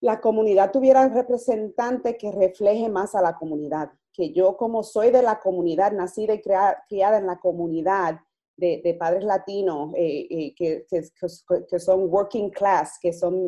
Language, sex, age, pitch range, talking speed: Spanish, female, 30-49, 185-230 Hz, 160 wpm